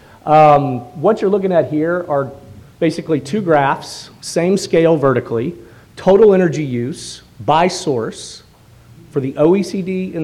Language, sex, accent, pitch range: English, male, American, 120-150 Hz